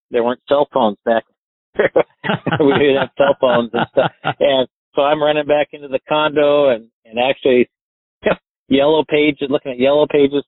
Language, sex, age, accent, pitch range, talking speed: English, male, 50-69, American, 105-135 Hz, 165 wpm